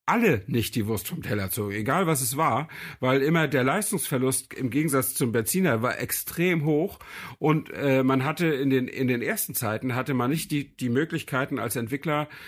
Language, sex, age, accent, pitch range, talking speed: German, male, 50-69, German, 115-140 Hz, 190 wpm